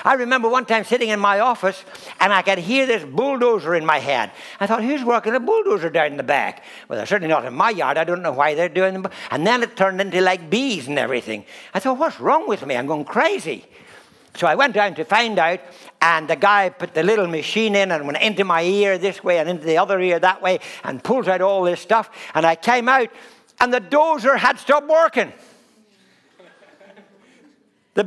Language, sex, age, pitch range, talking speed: English, male, 60-79, 180-255 Hz, 225 wpm